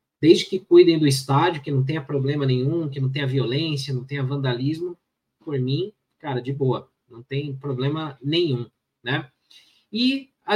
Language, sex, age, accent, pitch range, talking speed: Portuguese, male, 20-39, Brazilian, 135-170 Hz, 165 wpm